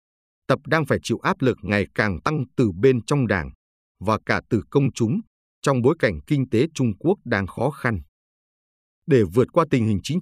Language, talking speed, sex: Vietnamese, 200 wpm, male